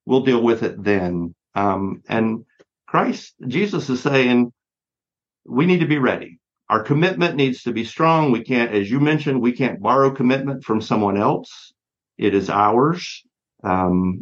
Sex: male